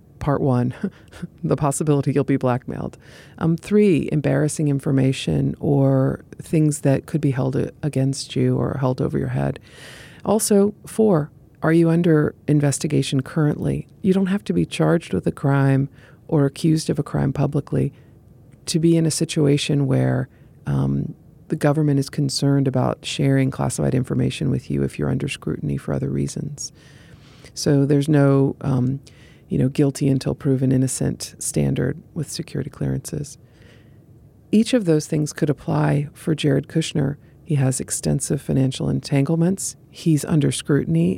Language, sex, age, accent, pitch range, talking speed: English, female, 40-59, American, 135-155 Hz, 145 wpm